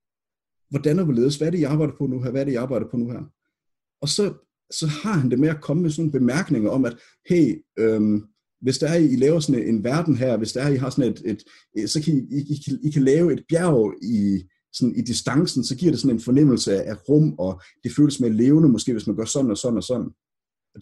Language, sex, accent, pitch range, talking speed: Danish, male, native, 120-155 Hz, 270 wpm